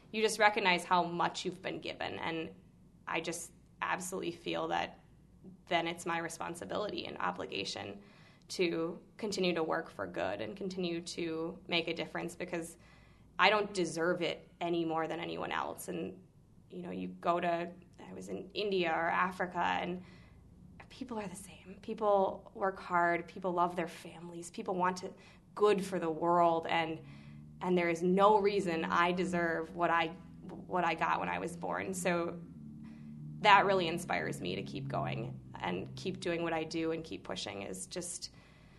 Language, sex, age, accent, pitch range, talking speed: English, female, 20-39, American, 165-190 Hz, 165 wpm